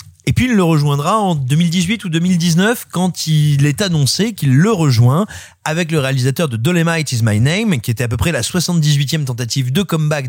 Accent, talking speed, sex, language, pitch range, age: French, 200 wpm, male, French, 115-160 Hz, 30-49